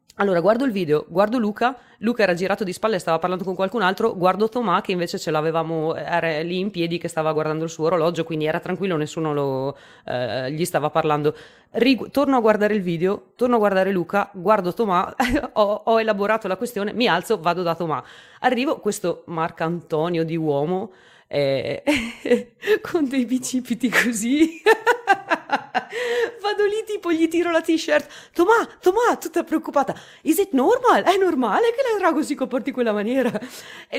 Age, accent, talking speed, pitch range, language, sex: 30-49, native, 175 wpm, 170-255 Hz, Italian, female